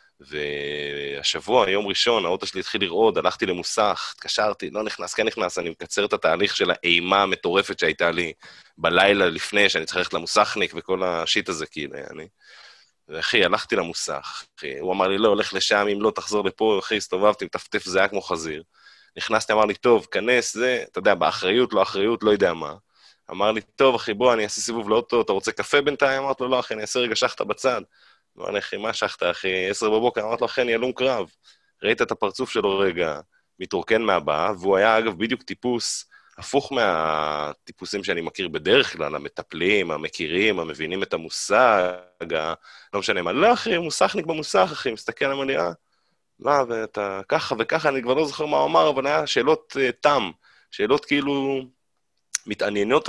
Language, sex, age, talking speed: Hebrew, male, 20-39, 160 wpm